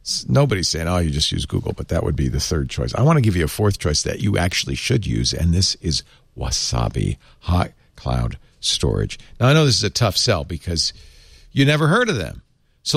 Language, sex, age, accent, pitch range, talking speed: English, male, 50-69, American, 95-145 Hz, 225 wpm